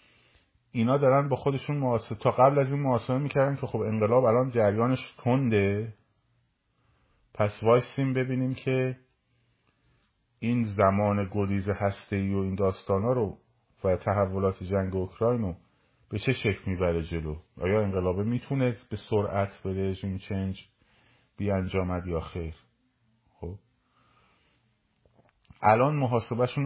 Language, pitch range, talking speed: Persian, 95-120 Hz, 120 wpm